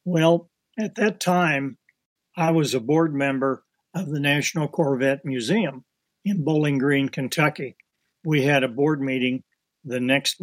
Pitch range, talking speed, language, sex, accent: 135-170 Hz, 145 wpm, English, male, American